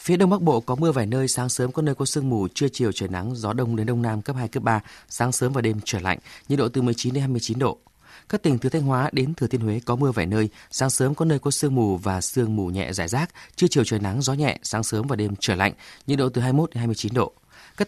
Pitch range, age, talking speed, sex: 110-135 Hz, 20-39, 290 wpm, male